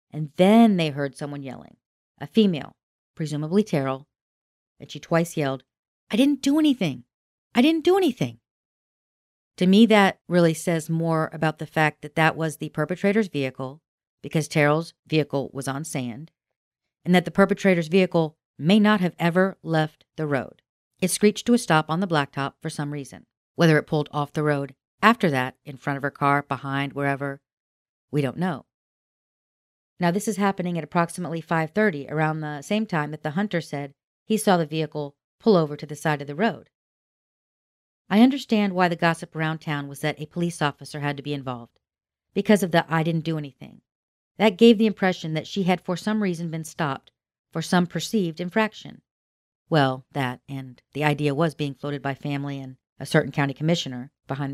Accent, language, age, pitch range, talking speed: American, English, 40-59, 140-180 Hz, 185 wpm